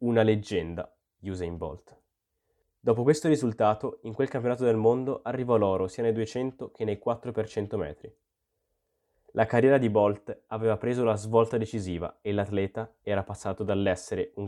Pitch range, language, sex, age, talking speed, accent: 100-120 Hz, Italian, male, 20-39, 155 wpm, native